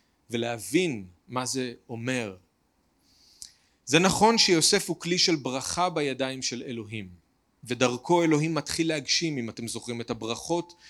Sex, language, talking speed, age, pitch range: male, Hebrew, 125 wpm, 40-59, 125-170 Hz